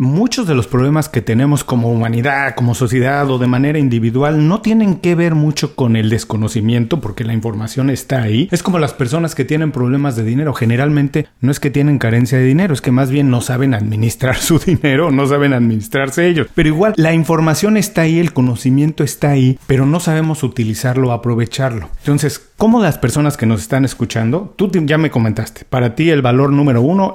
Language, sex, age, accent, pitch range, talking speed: Spanish, male, 40-59, Mexican, 125-155 Hz, 200 wpm